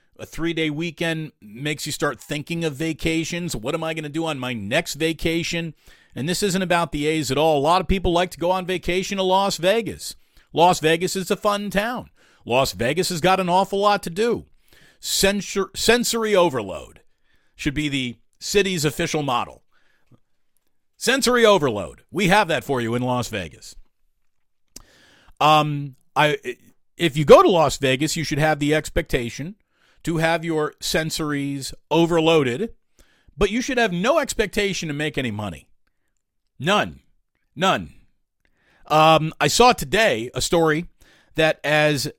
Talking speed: 155 wpm